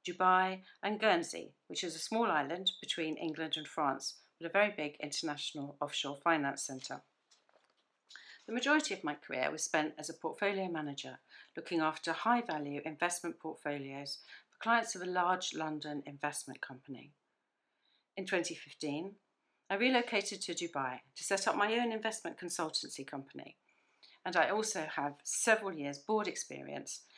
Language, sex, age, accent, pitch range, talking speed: English, female, 50-69, British, 145-190 Hz, 150 wpm